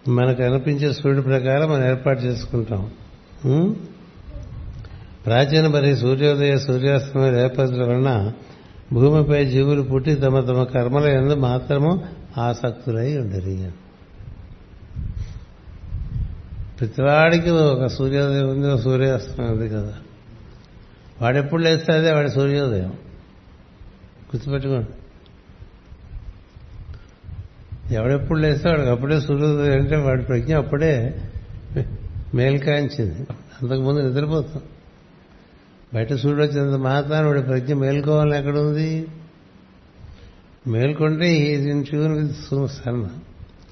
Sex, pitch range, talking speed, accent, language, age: male, 110-145 Hz, 75 wpm, native, Telugu, 60-79